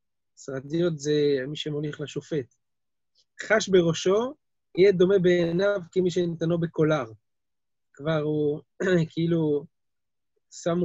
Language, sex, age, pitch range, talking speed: Hebrew, male, 30-49, 150-185 Hz, 95 wpm